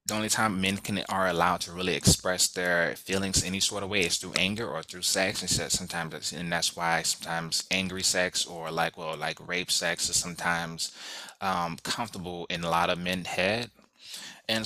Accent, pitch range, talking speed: American, 85-95 Hz, 200 wpm